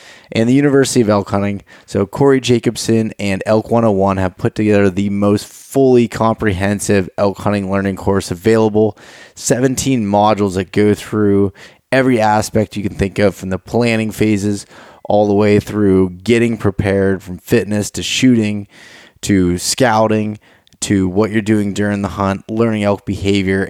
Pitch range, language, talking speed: 95-110 Hz, English, 155 wpm